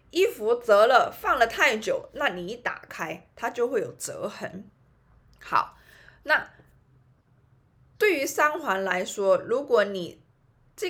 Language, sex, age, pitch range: Chinese, female, 20-39, 180-285 Hz